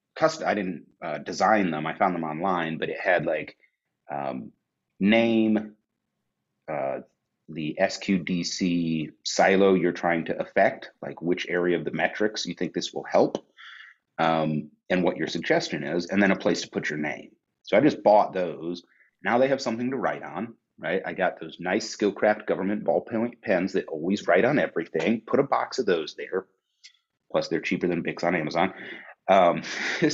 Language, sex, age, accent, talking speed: English, male, 30-49, American, 175 wpm